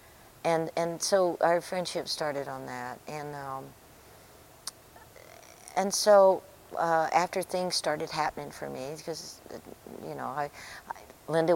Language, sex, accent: English, female, American